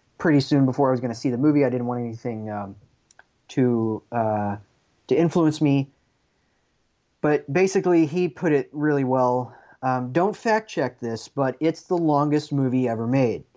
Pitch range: 115-145 Hz